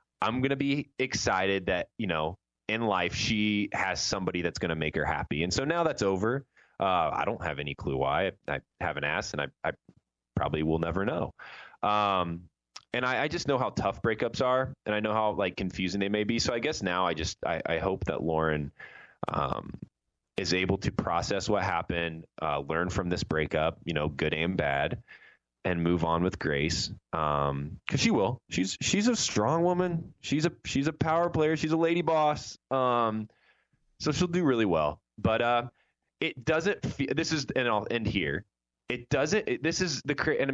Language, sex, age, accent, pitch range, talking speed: English, male, 20-39, American, 85-130 Hz, 200 wpm